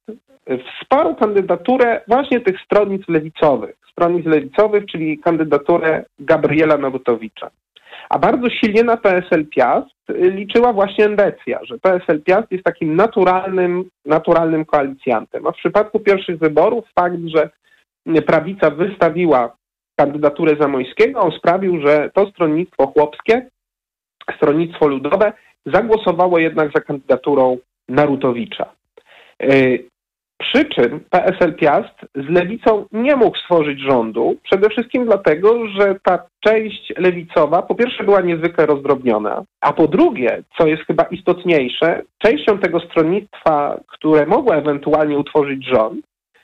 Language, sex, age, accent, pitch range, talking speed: Polish, male, 40-59, native, 155-210 Hz, 115 wpm